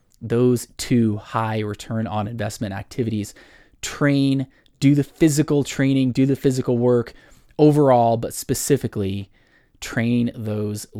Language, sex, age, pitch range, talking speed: English, male, 20-39, 110-145 Hz, 115 wpm